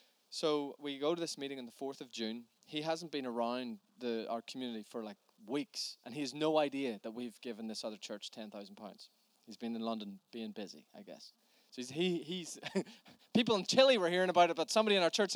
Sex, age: male, 20-39